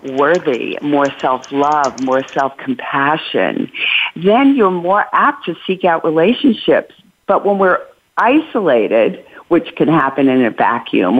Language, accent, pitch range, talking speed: English, American, 135-190 Hz, 135 wpm